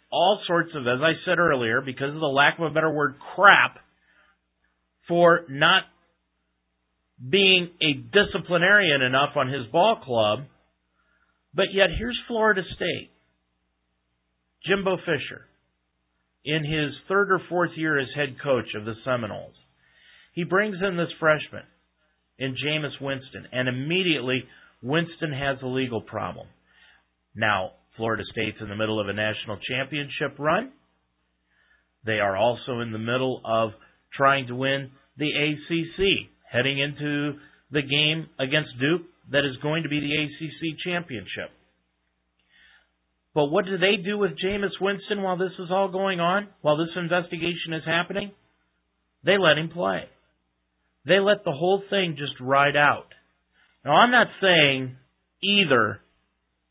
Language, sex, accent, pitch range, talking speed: English, male, American, 110-170 Hz, 140 wpm